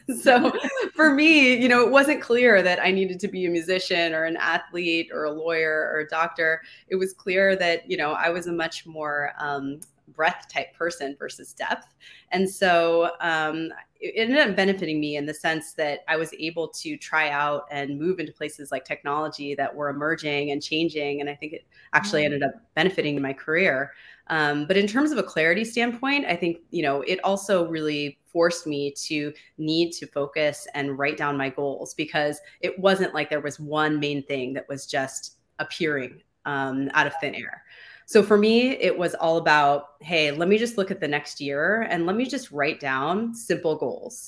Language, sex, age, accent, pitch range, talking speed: English, female, 20-39, American, 145-185 Hz, 200 wpm